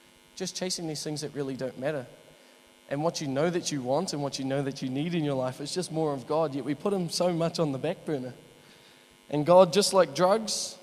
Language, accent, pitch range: English, Australian, 145-205 Hz